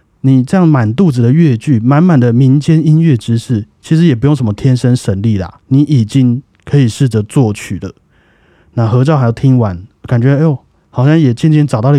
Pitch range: 110-145 Hz